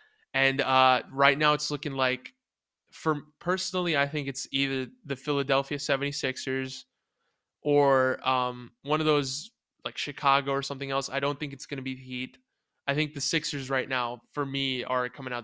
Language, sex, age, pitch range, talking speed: English, male, 20-39, 135-150 Hz, 180 wpm